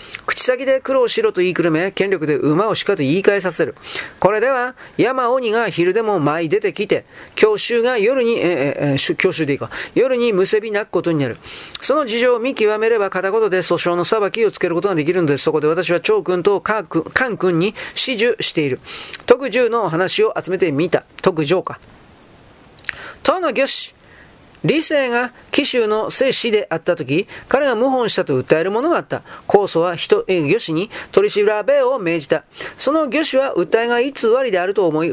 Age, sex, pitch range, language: 40-59, male, 175-250 Hz, Japanese